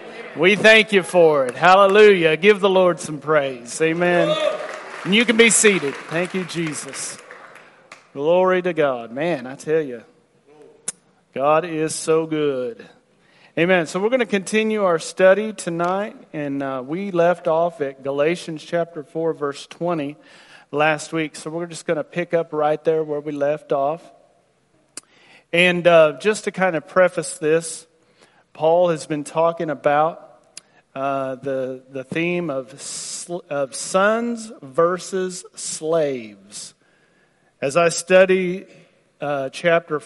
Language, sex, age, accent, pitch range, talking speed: English, male, 40-59, American, 145-180 Hz, 140 wpm